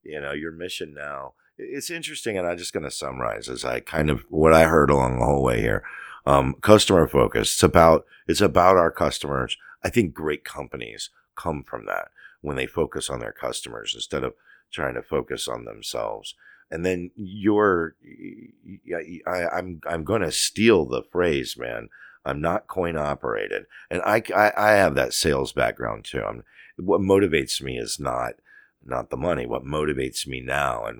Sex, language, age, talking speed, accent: male, English, 50-69, 180 wpm, American